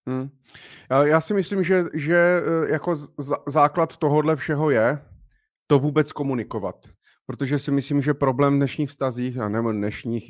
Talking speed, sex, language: 140 wpm, male, Czech